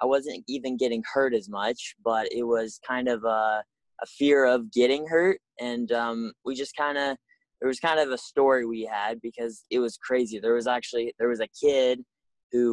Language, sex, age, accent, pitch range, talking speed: English, male, 10-29, American, 115-130 Hz, 210 wpm